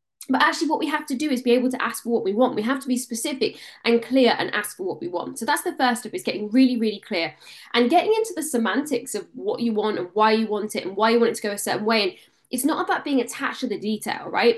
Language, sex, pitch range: English, female, 215-270 Hz